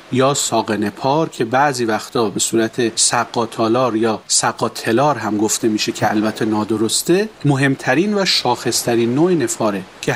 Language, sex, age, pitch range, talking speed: Persian, male, 40-59, 120-165 Hz, 135 wpm